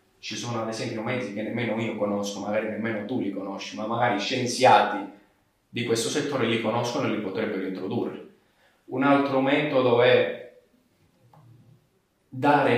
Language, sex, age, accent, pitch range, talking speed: Italian, male, 30-49, native, 105-145 Hz, 145 wpm